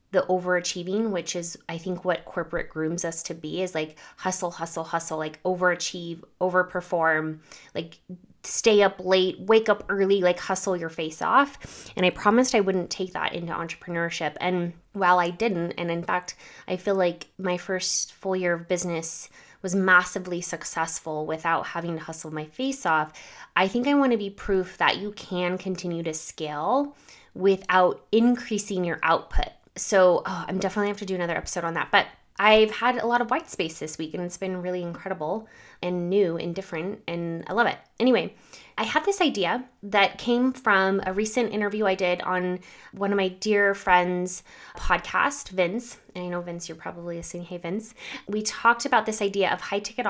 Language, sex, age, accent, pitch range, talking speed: English, female, 20-39, American, 170-205 Hz, 185 wpm